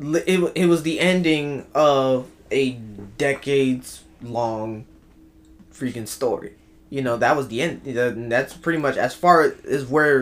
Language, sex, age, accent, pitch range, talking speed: English, male, 20-39, American, 115-145 Hz, 135 wpm